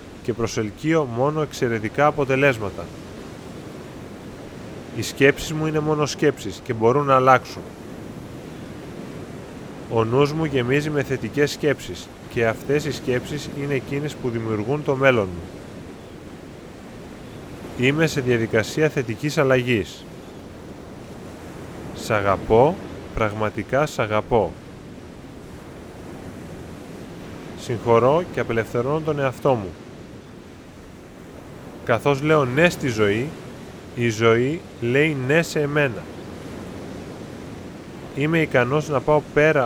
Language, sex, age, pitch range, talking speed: Greek, male, 20-39, 115-150 Hz, 100 wpm